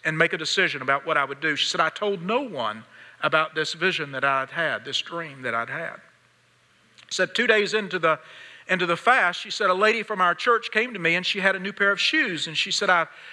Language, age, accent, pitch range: English, 50-69, American, 175-225 Hz